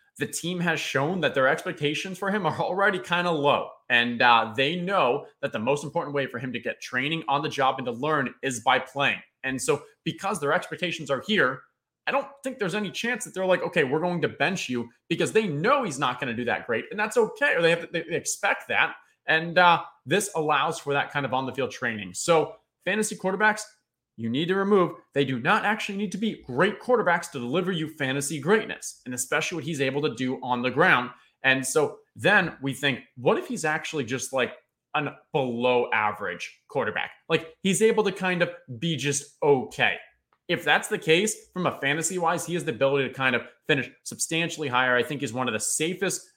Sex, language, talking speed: male, English, 220 wpm